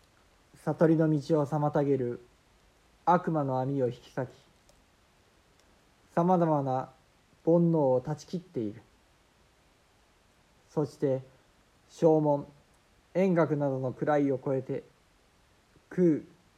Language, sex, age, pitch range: Japanese, male, 50-69, 125-160 Hz